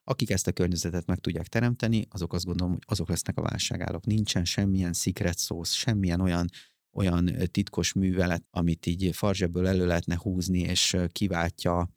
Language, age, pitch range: Hungarian, 30-49, 85-100 Hz